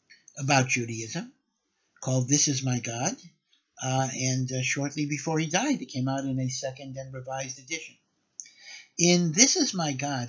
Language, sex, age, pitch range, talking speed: English, male, 60-79, 135-170 Hz, 165 wpm